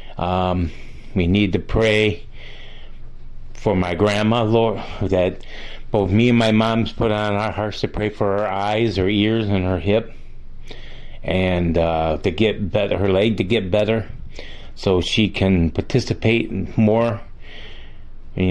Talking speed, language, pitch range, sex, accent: 145 wpm, English, 90-115 Hz, male, American